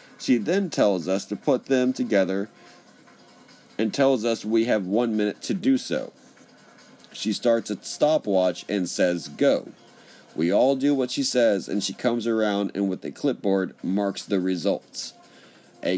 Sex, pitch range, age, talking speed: male, 95-125 Hz, 40-59, 160 wpm